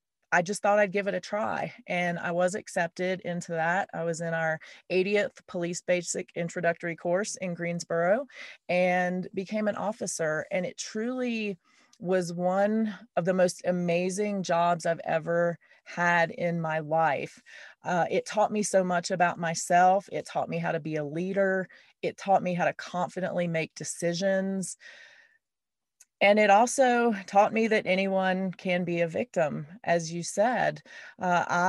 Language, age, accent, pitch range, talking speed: English, 30-49, American, 165-195 Hz, 160 wpm